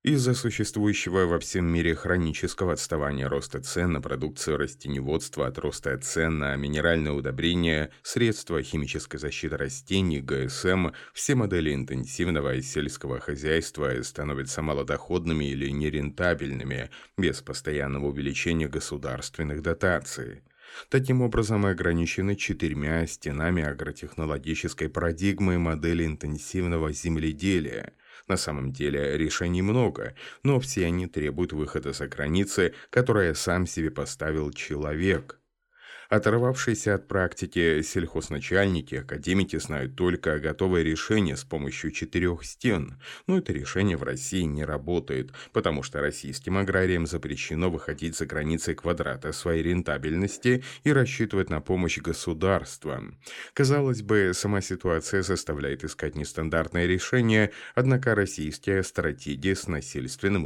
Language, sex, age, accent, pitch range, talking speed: Russian, male, 30-49, native, 75-95 Hz, 115 wpm